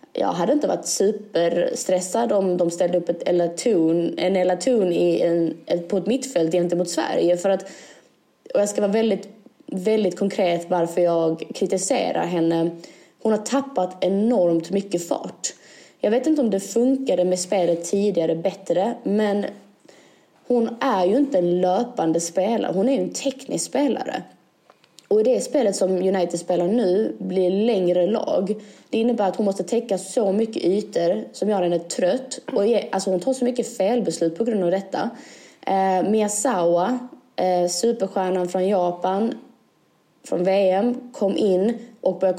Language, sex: English, female